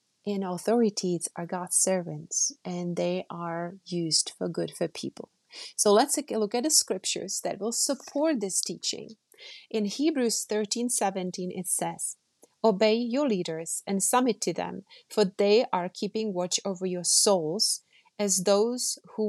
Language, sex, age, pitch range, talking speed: English, female, 30-49, 175-210 Hz, 150 wpm